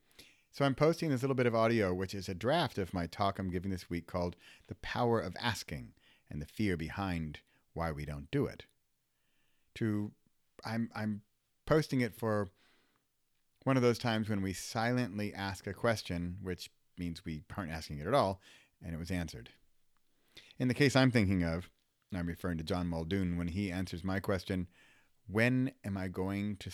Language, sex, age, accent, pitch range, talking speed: English, male, 40-59, American, 80-110 Hz, 185 wpm